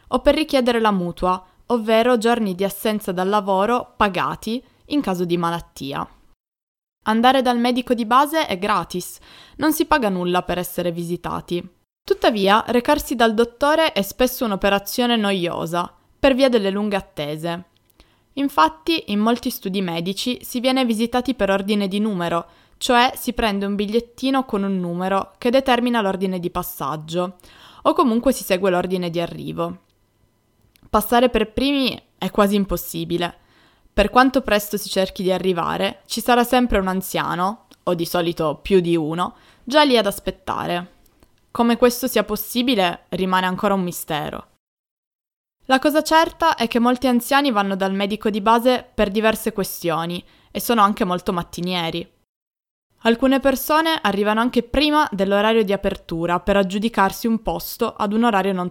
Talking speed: 150 wpm